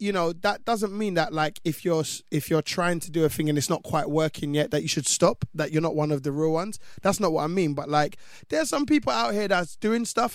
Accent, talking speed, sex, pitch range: British, 285 wpm, male, 145-175 Hz